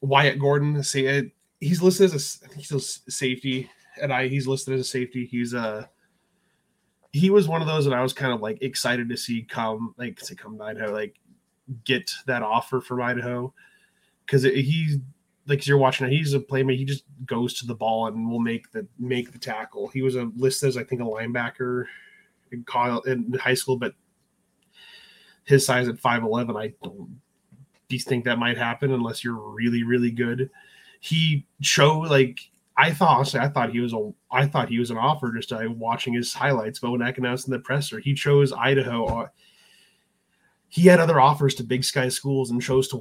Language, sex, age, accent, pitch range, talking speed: English, male, 20-39, American, 120-140 Hz, 200 wpm